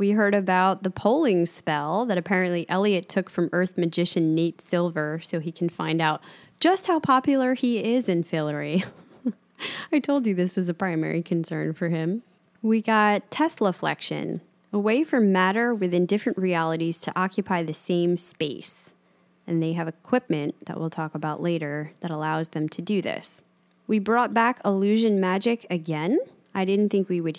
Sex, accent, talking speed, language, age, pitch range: female, American, 170 wpm, English, 10-29, 165-200 Hz